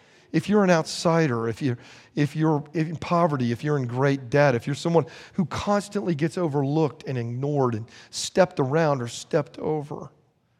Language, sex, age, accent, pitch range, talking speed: English, male, 40-59, American, 125-170 Hz, 165 wpm